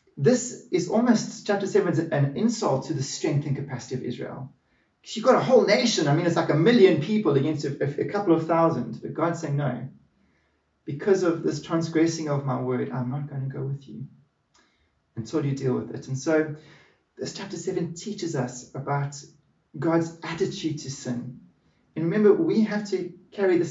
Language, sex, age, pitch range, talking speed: English, male, 30-49, 140-175 Hz, 190 wpm